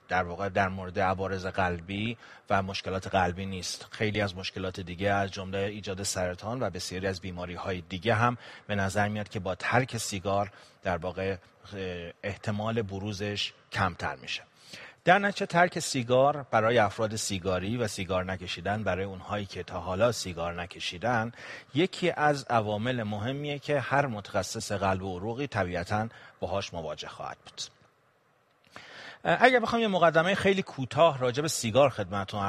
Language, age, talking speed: Persian, 30-49, 150 wpm